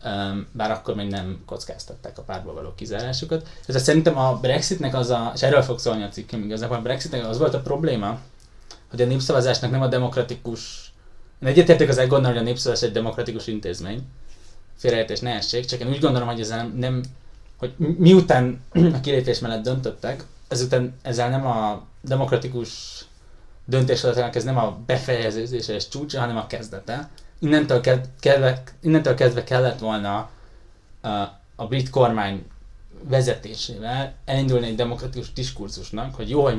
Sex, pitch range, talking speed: male, 105-130 Hz, 140 wpm